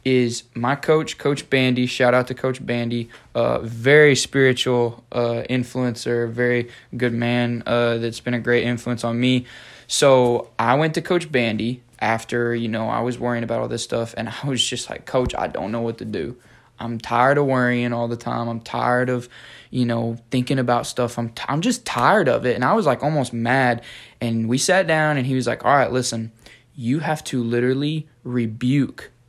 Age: 20-39